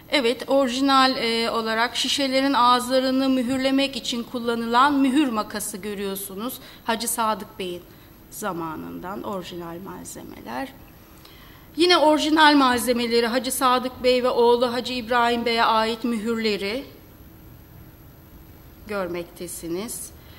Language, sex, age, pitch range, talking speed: Turkish, female, 30-49, 215-270 Hz, 95 wpm